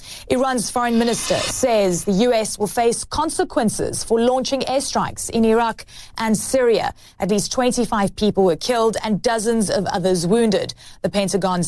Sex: female